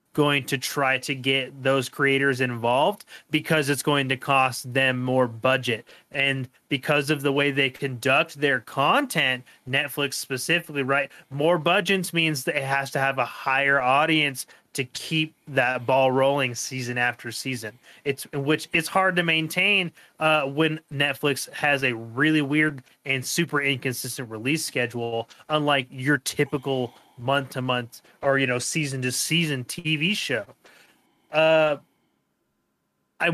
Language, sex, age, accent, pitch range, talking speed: English, male, 30-49, American, 135-165 Hz, 145 wpm